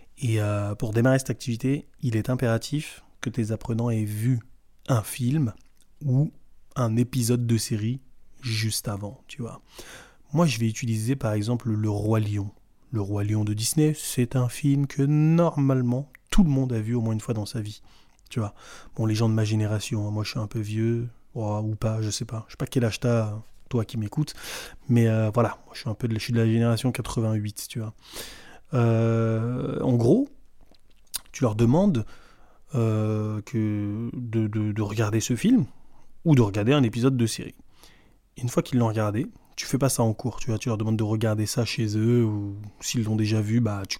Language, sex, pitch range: French, male, 110-125 Hz